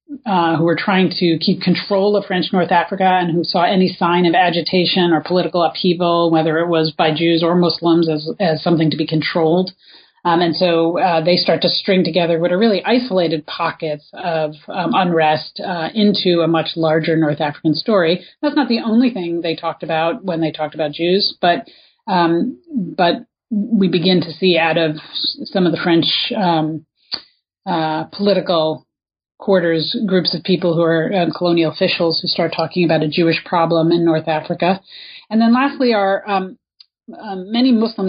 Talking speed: 180 wpm